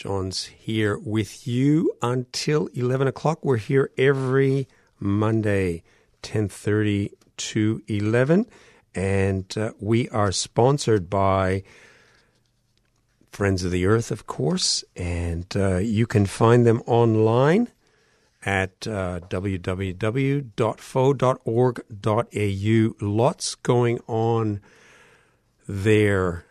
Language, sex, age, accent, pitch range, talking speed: English, male, 50-69, American, 100-120 Hz, 90 wpm